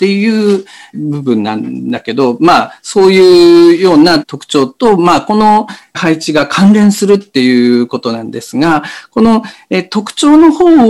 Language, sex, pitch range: Japanese, male, 155-245 Hz